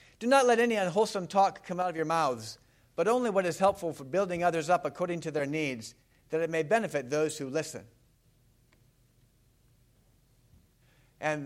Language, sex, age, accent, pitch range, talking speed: English, male, 60-79, American, 125-190 Hz, 170 wpm